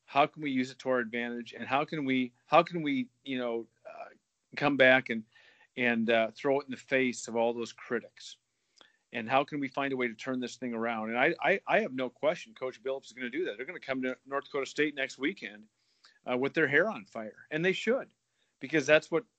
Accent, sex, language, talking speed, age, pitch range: American, male, English, 250 wpm, 40-59, 120-140 Hz